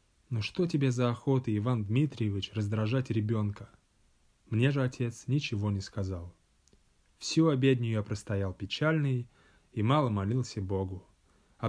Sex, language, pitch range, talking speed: male, English, 105-140 Hz, 130 wpm